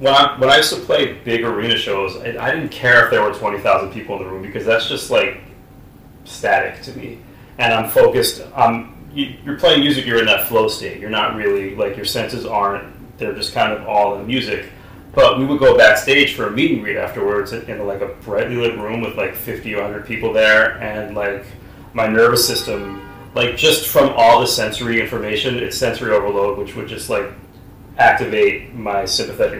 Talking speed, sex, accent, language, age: 200 wpm, male, American, English, 30-49